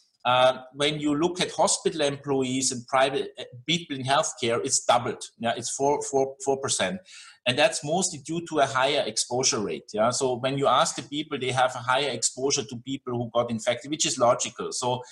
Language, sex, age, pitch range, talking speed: English, male, 50-69, 125-155 Hz, 200 wpm